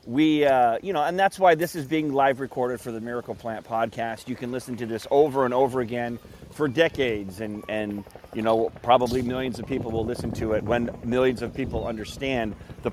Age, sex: 30-49, male